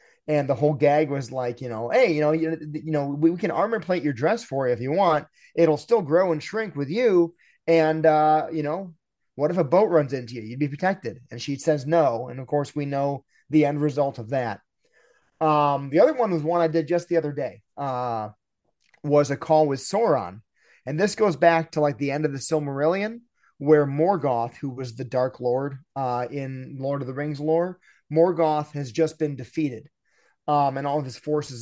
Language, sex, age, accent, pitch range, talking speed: English, male, 30-49, American, 140-170 Hz, 220 wpm